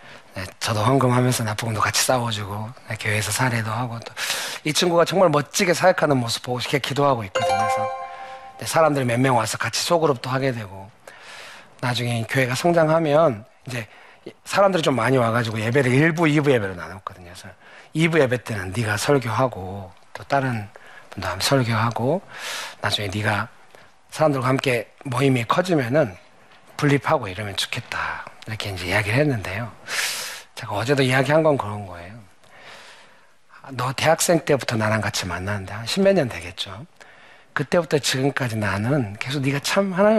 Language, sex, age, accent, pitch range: Korean, male, 40-59, native, 105-145 Hz